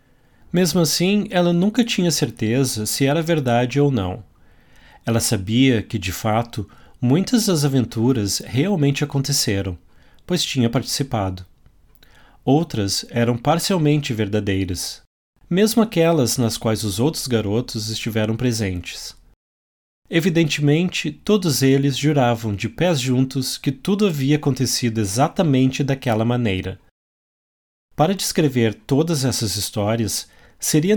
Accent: Brazilian